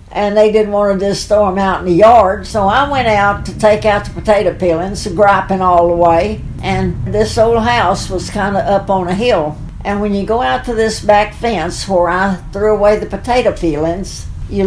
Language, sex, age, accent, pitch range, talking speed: English, female, 60-79, American, 185-220 Hz, 225 wpm